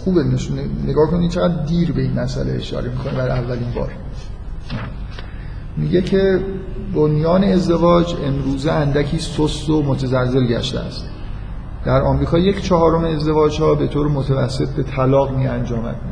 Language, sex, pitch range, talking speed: Persian, male, 125-155 Hz, 145 wpm